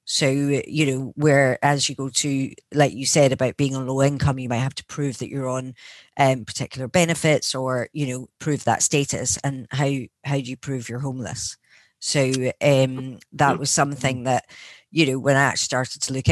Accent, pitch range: British, 125-145 Hz